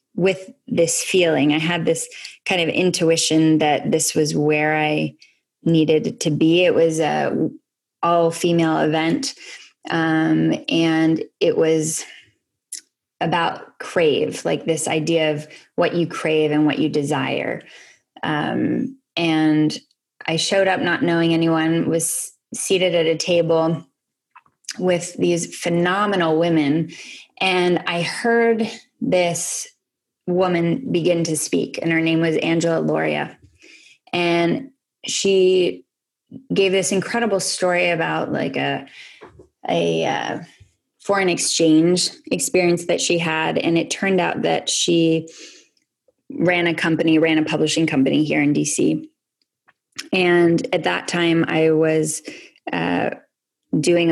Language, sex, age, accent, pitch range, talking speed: English, female, 10-29, American, 155-180 Hz, 125 wpm